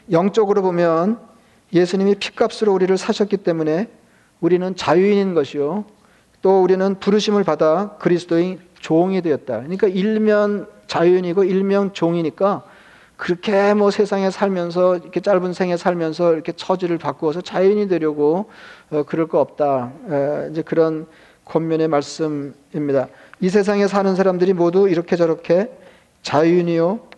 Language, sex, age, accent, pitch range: Korean, male, 40-59, native, 165-200 Hz